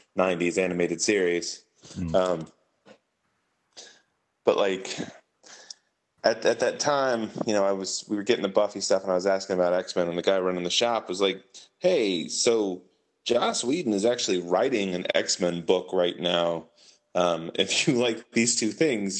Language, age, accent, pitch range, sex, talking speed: English, 20-39, American, 90-110 Hz, male, 165 wpm